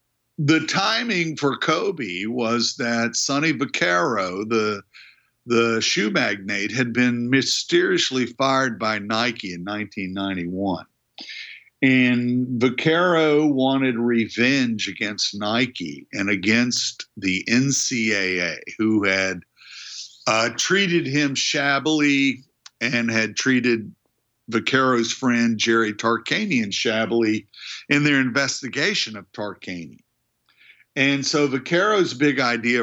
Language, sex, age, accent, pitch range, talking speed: English, male, 50-69, American, 105-135 Hz, 100 wpm